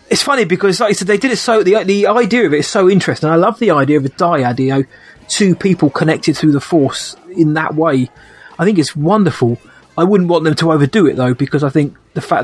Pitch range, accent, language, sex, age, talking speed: 135-165 Hz, British, English, male, 20-39, 250 wpm